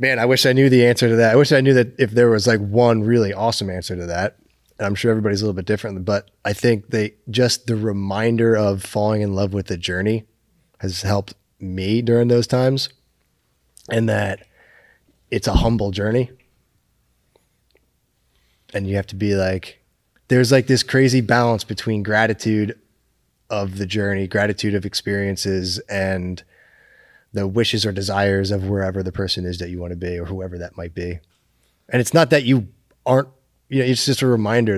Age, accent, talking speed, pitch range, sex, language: 20-39, American, 190 wpm, 95-120 Hz, male, English